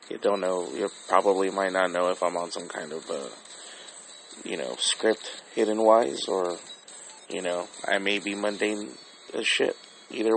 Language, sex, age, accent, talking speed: English, male, 30-49, American, 170 wpm